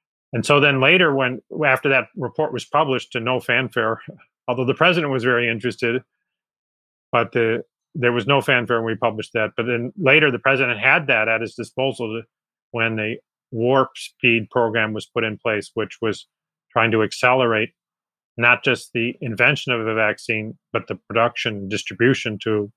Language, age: English, 40-59